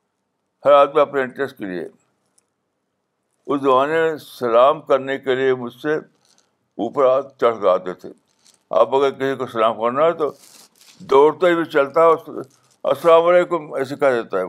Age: 60-79